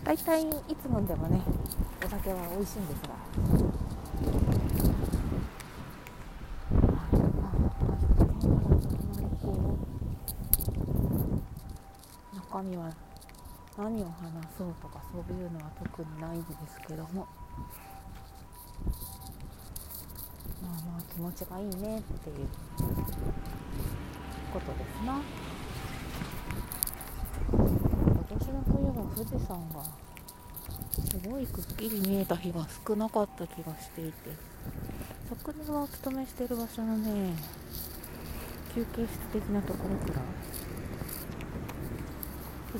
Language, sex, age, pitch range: Japanese, female, 40-59, 130-200 Hz